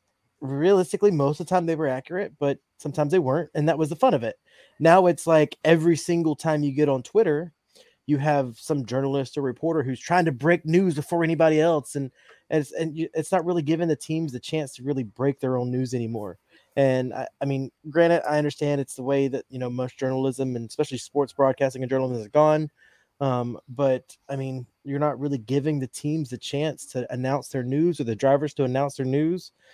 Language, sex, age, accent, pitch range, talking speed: English, male, 20-39, American, 135-165 Hz, 220 wpm